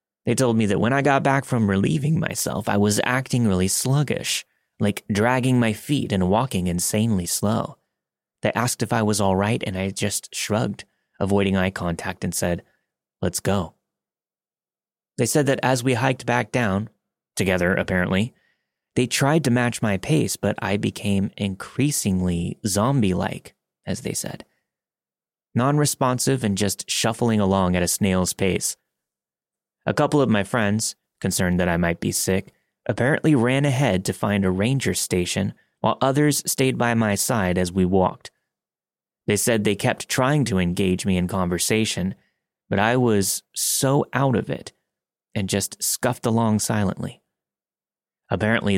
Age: 30-49